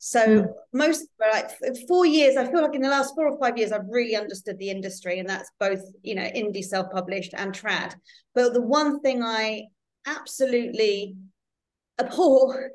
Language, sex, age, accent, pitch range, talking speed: English, female, 30-49, British, 195-255 Hz, 170 wpm